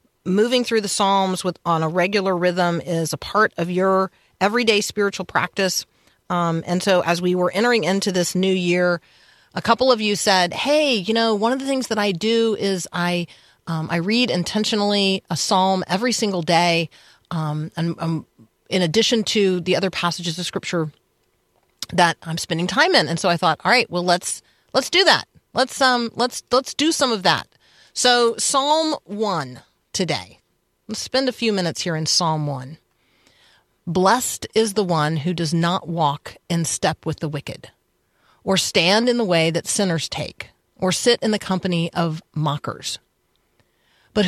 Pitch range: 165-215 Hz